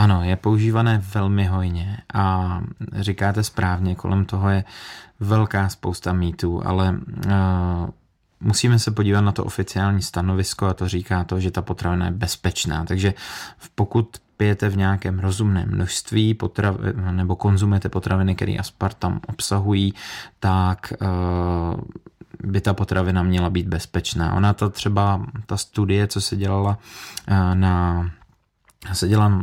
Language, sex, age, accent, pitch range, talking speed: Czech, male, 20-39, native, 95-105 Hz, 135 wpm